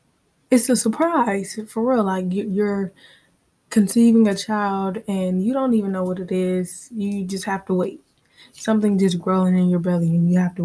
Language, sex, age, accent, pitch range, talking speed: English, female, 20-39, American, 180-235 Hz, 185 wpm